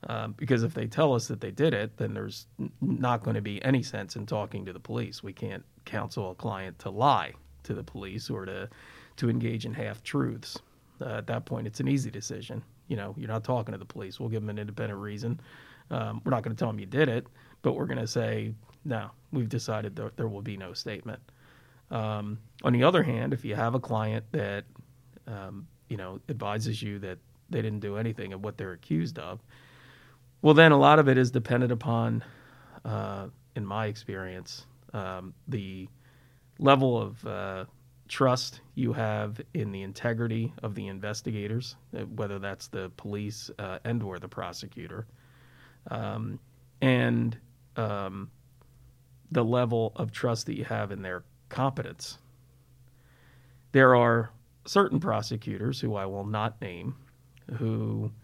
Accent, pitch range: American, 105-130 Hz